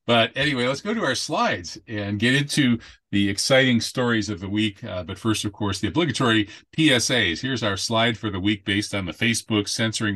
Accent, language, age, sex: American, English, 40-59, male